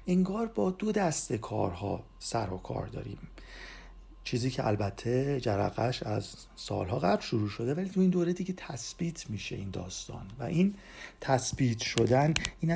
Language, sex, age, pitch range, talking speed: Persian, male, 50-69, 110-170 Hz, 155 wpm